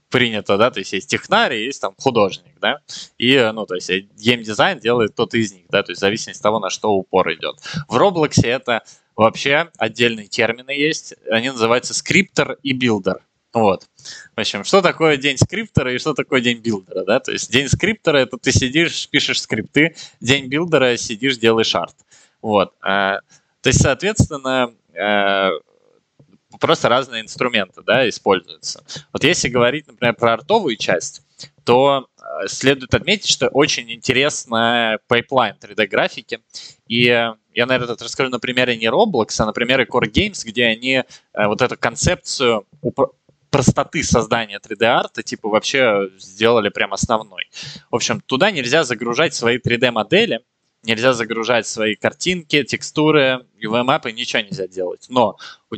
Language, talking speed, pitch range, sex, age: Russian, 150 wpm, 110-135 Hz, male, 20-39